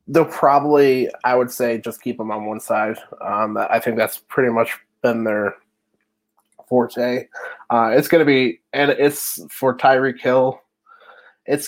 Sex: male